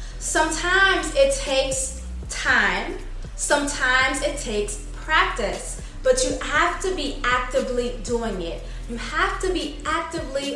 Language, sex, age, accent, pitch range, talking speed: English, female, 20-39, American, 245-295 Hz, 120 wpm